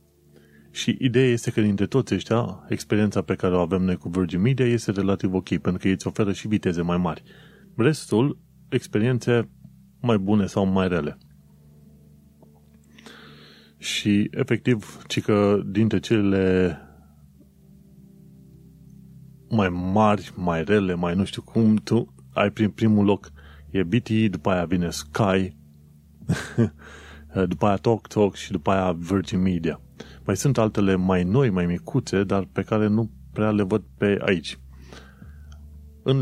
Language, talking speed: Romanian, 140 wpm